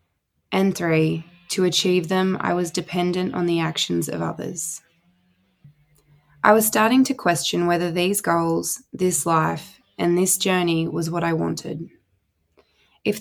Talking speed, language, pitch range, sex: 140 wpm, English, 160-185 Hz, female